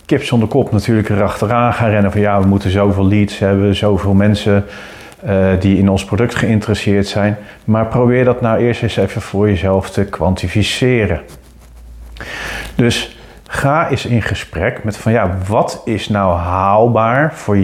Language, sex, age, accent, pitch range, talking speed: Dutch, male, 40-59, Dutch, 100-120 Hz, 160 wpm